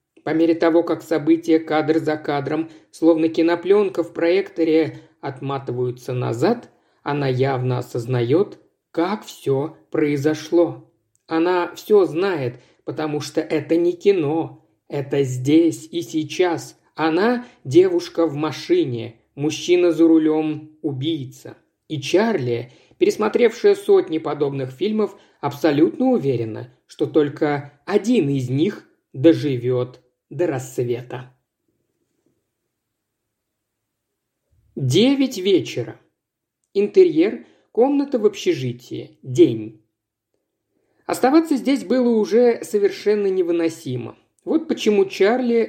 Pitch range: 135-230 Hz